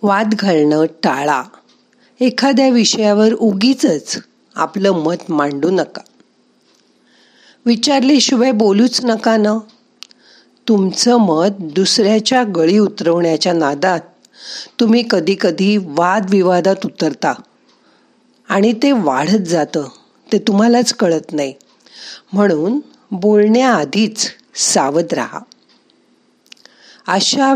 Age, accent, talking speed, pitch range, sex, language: 50-69, native, 65 wpm, 175-240 Hz, female, Marathi